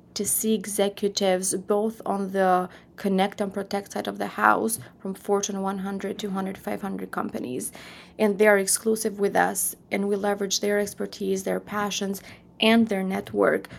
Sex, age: female, 20-39